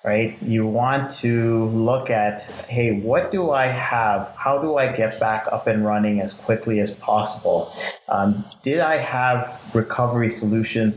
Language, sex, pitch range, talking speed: English, male, 105-115 Hz, 160 wpm